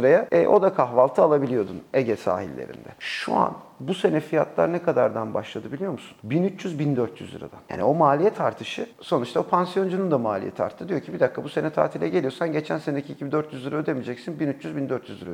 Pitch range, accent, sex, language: 125-180 Hz, native, male, Turkish